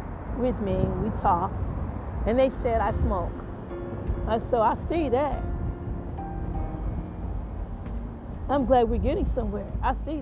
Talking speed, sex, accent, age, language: 130 wpm, female, American, 40-59, English